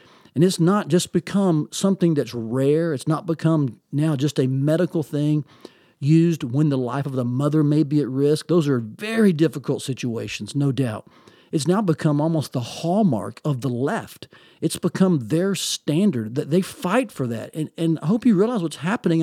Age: 50-69